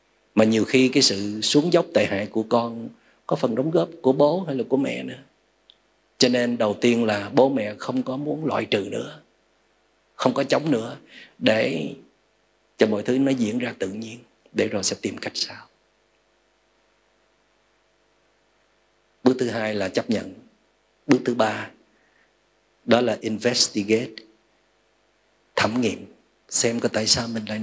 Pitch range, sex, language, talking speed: 100-125 Hz, male, Vietnamese, 160 wpm